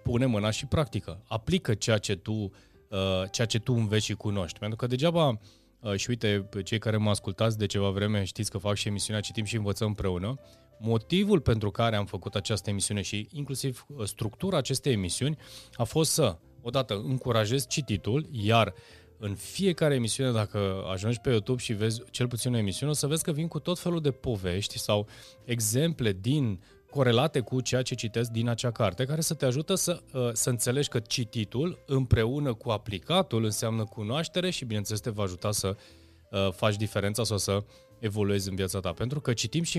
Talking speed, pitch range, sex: 180 wpm, 105-130 Hz, male